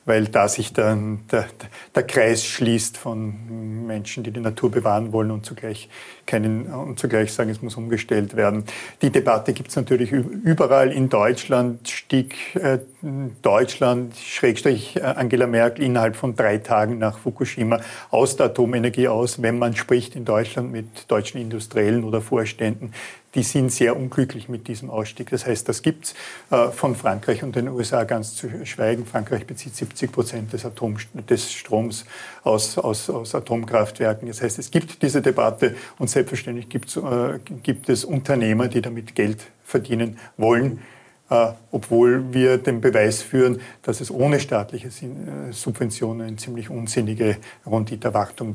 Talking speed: 155 wpm